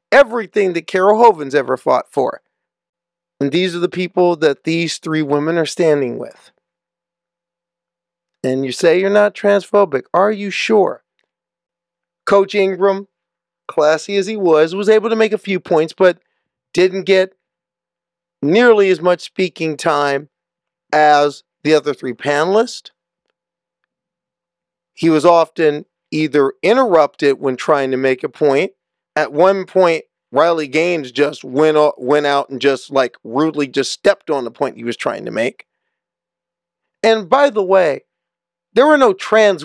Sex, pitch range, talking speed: male, 155-195 Hz, 145 wpm